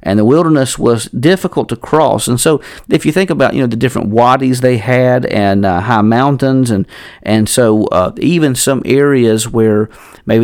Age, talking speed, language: 50-69, 190 wpm, English